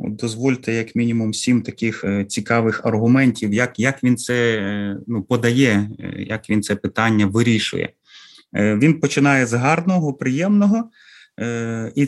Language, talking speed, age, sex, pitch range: Ukrainian, 120 wpm, 30-49, male, 110-145 Hz